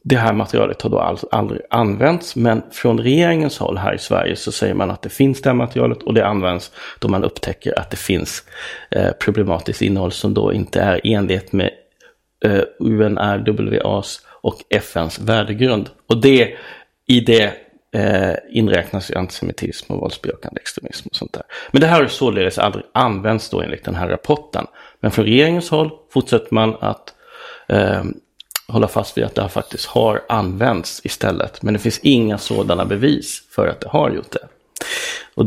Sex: male